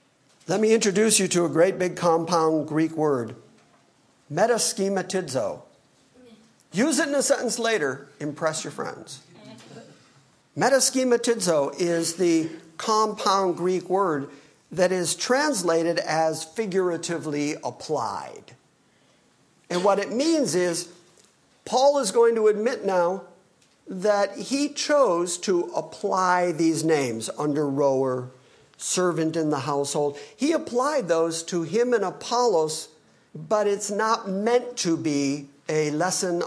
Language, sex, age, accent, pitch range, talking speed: English, male, 50-69, American, 165-235 Hz, 120 wpm